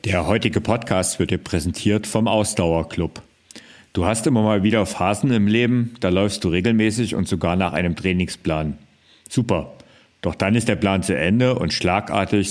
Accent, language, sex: German, German, male